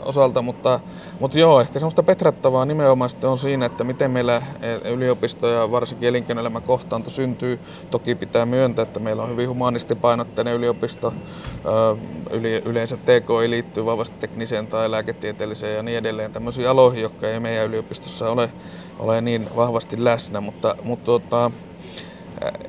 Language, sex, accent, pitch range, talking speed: Finnish, male, native, 115-130 Hz, 140 wpm